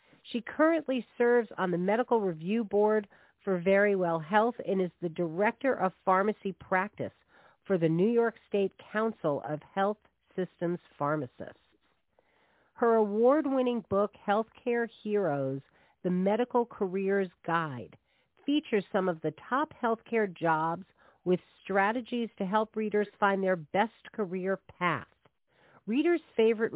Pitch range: 175-225 Hz